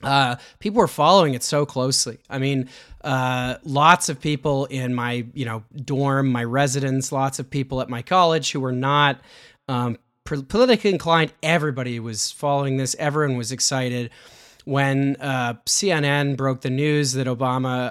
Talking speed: 160 wpm